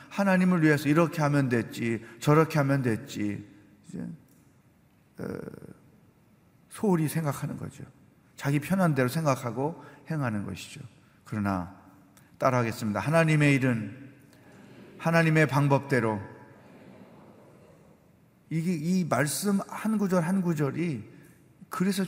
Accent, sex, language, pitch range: native, male, Korean, 130-170 Hz